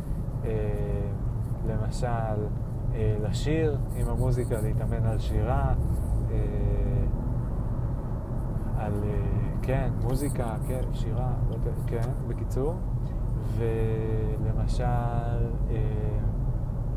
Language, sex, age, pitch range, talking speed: Hebrew, male, 30-49, 110-125 Hz, 70 wpm